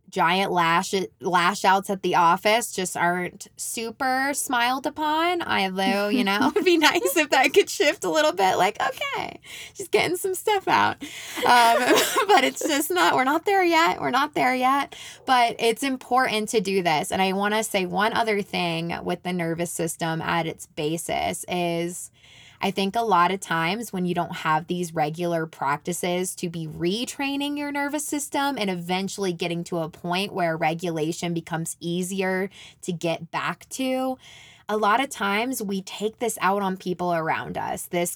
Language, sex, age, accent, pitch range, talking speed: English, female, 20-39, American, 175-230 Hz, 180 wpm